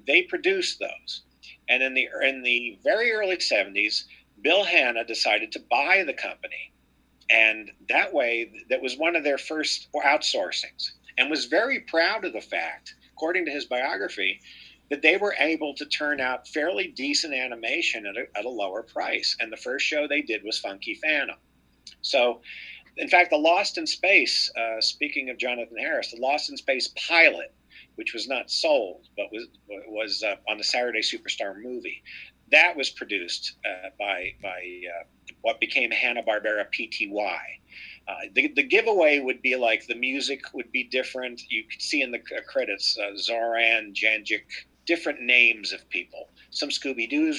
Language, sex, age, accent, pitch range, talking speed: English, male, 50-69, American, 110-155 Hz, 165 wpm